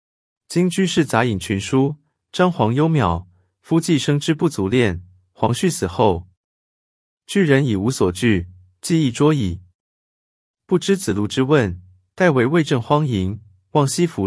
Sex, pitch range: male, 95-150 Hz